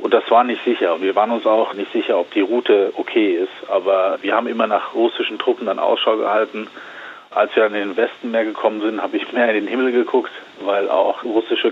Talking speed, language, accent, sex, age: 225 wpm, German, German, male, 40-59